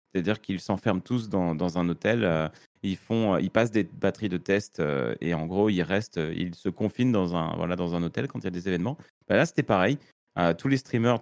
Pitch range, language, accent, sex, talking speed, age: 85-110 Hz, French, French, male, 245 wpm, 30-49